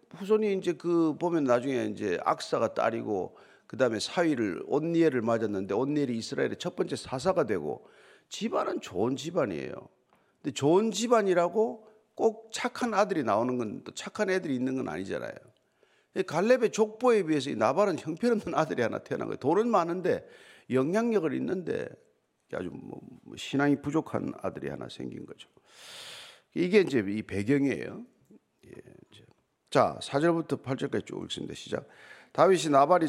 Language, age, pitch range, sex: Korean, 50-69, 130-200 Hz, male